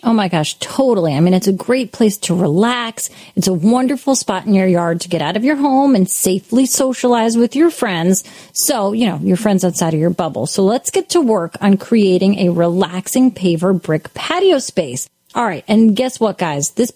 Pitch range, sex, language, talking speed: 185-250 Hz, female, English, 210 wpm